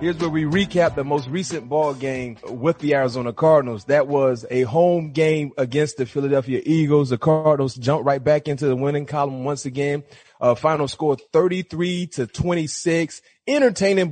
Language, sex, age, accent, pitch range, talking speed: English, male, 30-49, American, 125-155 Hz, 170 wpm